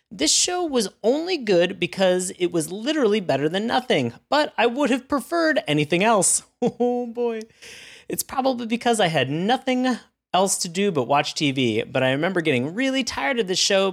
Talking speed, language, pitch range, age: 180 wpm, English, 125-200 Hz, 30-49